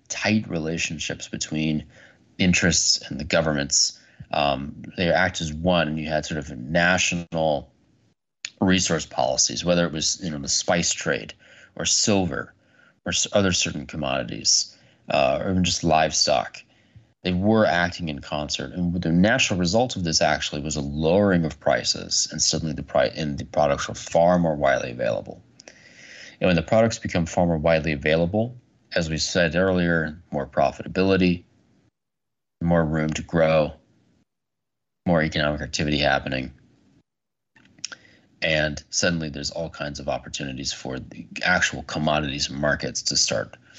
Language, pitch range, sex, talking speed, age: English, 75-90 Hz, male, 145 wpm, 30-49